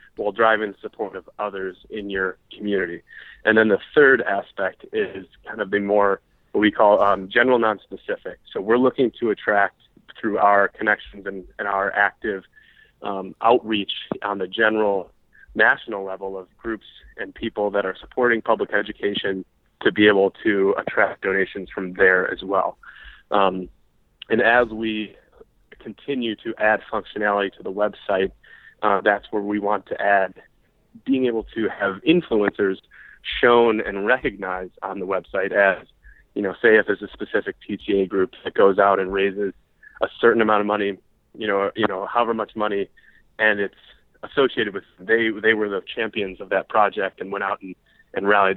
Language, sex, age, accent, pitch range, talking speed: English, male, 20-39, American, 95-115 Hz, 170 wpm